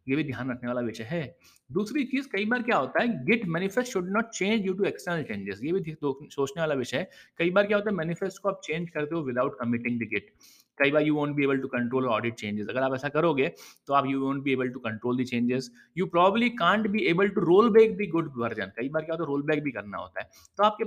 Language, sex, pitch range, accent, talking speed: Hindi, male, 135-195 Hz, native, 160 wpm